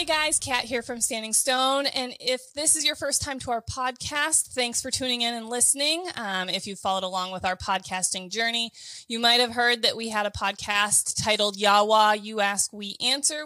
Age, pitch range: 20-39, 200-255 Hz